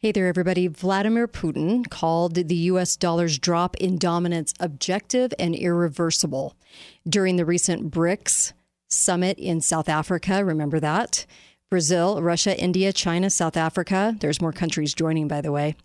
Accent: American